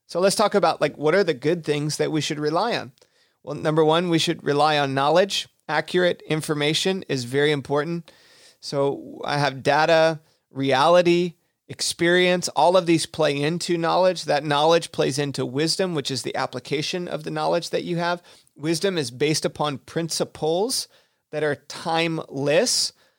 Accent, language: American, English